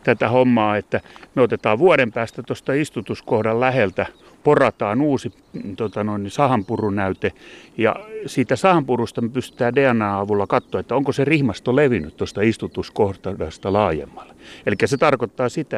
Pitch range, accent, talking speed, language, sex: 100-130 Hz, native, 120 wpm, Finnish, male